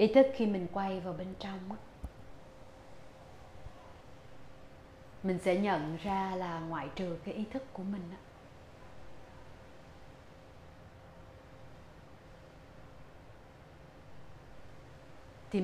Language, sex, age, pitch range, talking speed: Vietnamese, female, 30-49, 130-195 Hz, 80 wpm